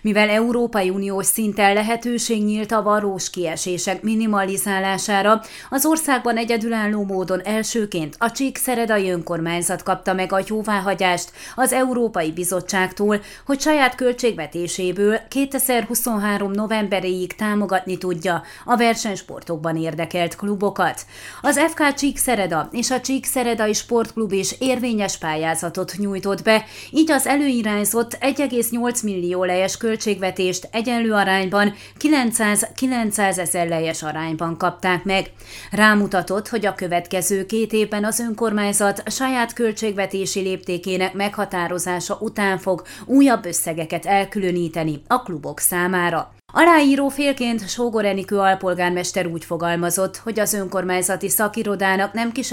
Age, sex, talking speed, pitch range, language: 30-49, female, 110 wpm, 180-230 Hz, Hungarian